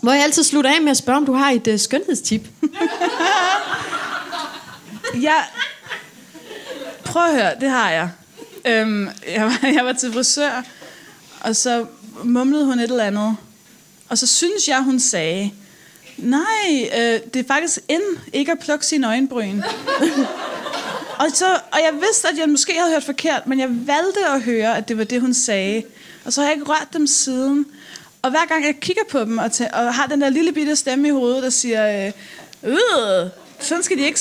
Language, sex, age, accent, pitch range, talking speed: Danish, female, 30-49, native, 225-295 Hz, 190 wpm